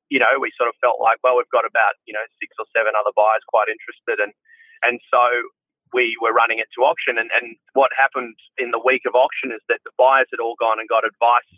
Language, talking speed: English, 250 wpm